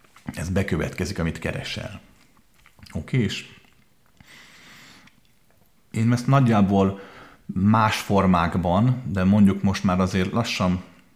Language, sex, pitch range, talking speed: Hungarian, male, 85-105 Hz, 90 wpm